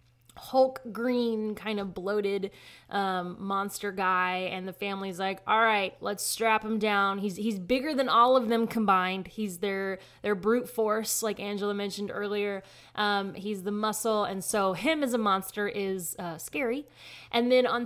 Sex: female